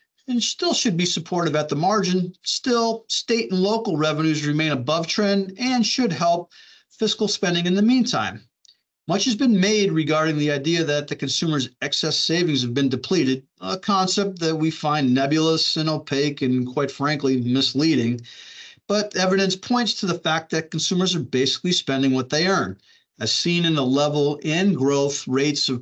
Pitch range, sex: 145-190 Hz, male